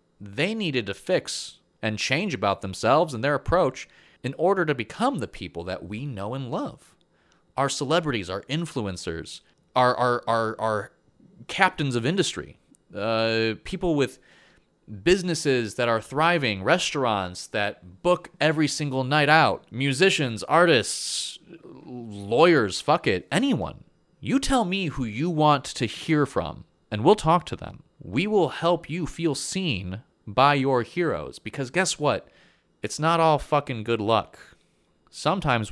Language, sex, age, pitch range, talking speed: English, male, 30-49, 105-160 Hz, 145 wpm